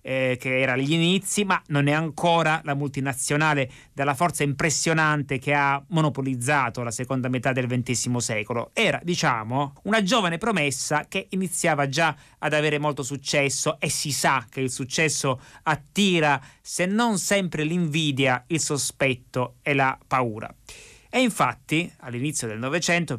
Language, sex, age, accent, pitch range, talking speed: Italian, male, 30-49, native, 135-165 Hz, 140 wpm